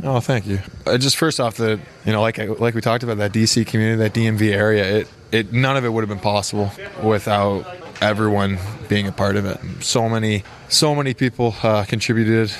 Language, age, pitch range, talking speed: English, 20-39, 105-115 Hz, 225 wpm